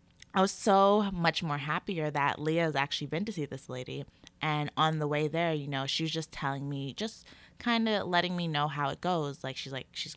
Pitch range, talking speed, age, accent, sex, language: 145-195 Hz, 235 wpm, 20-39, American, female, English